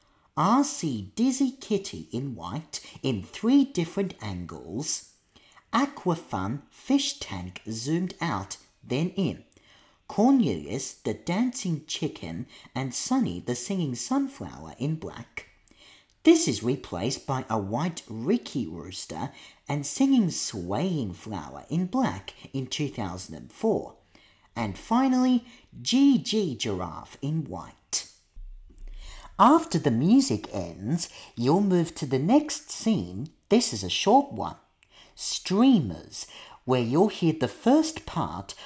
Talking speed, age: 110 wpm, 40-59